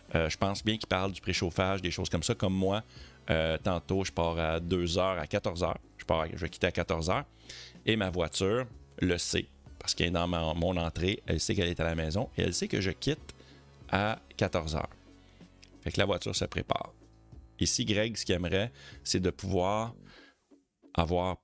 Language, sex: French, male